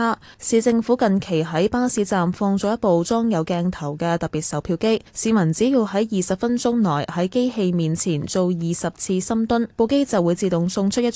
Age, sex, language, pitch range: 10-29, female, Chinese, 165-220 Hz